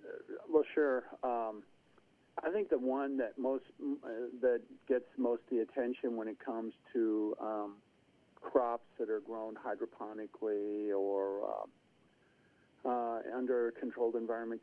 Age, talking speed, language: 50-69, 125 wpm, English